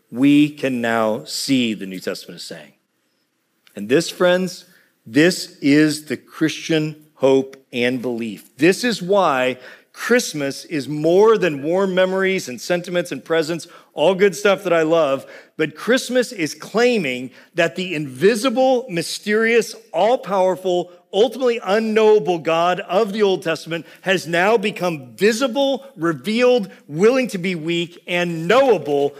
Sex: male